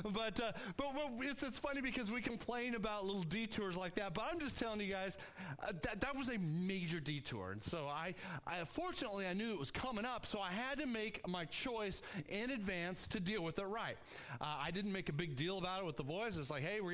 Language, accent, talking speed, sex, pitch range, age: English, American, 250 wpm, male, 155-230 Hz, 30-49